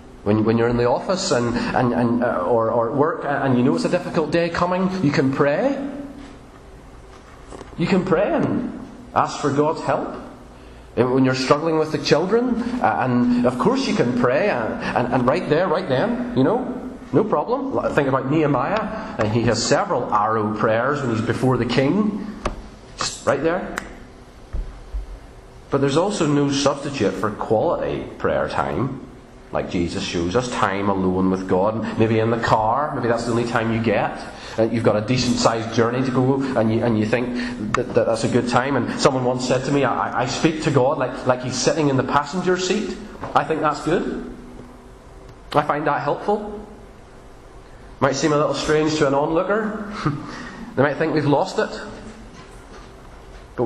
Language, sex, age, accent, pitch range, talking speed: English, male, 30-49, British, 120-160 Hz, 180 wpm